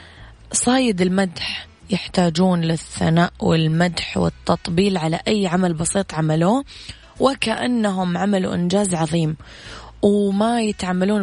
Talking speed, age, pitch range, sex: 90 wpm, 20-39, 165-200 Hz, female